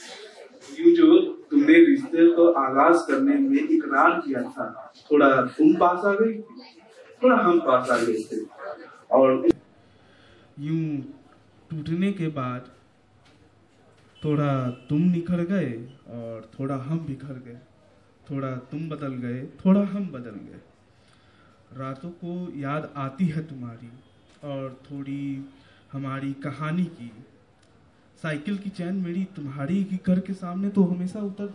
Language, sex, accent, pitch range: Hindi, male, native, 130-175 Hz